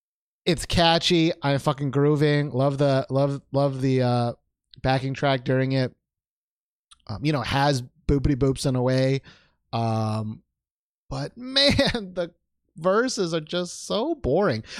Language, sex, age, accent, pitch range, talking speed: English, male, 30-49, American, 130-200 Hz, 140 wpm